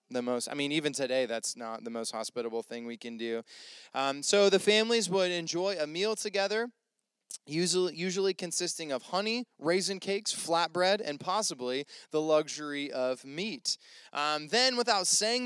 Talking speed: 165 wpm